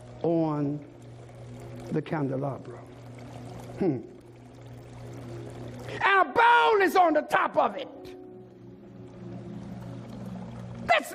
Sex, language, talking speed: male, English, 75 wpm